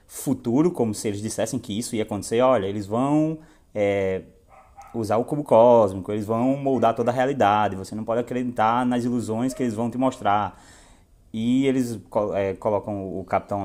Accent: Brazilian